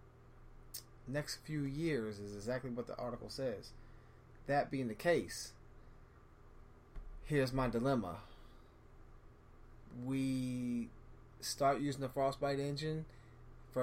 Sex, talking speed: male, 100 wpm